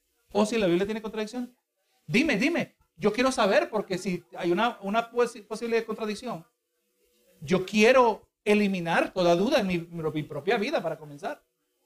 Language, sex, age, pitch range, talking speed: Spanish, male, 50-69, 165-210 Hz, 150 wpm